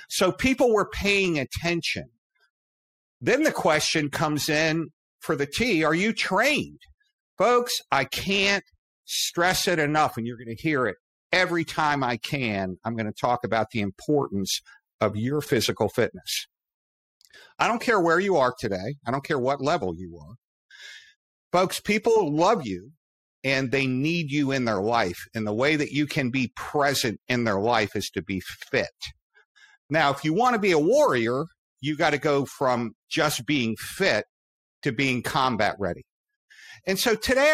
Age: 50-69